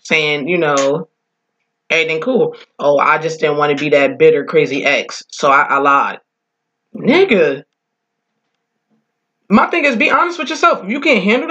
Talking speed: 160 wpm